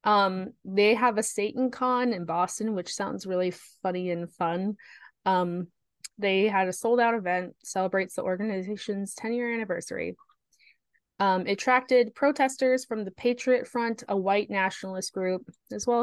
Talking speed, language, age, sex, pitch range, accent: 140 wpm, English, 20-39, female, 185-230 Hz, American